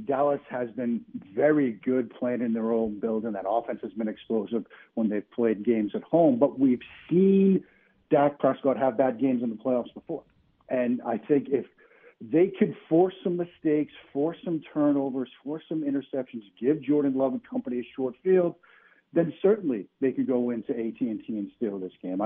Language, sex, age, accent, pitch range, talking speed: English, male, 50-69, American, 115-160 Hz, 180 wpm